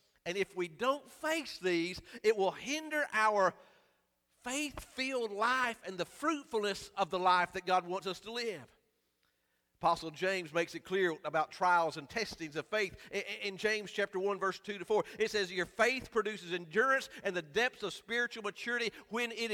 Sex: male